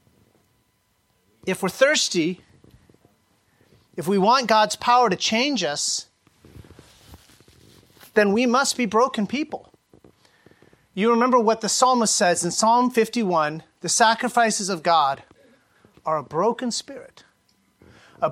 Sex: male